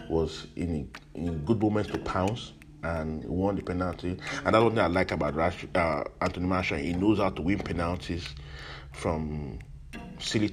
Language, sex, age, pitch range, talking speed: English, male, 30-49, 80-105 Hz, 165 wpm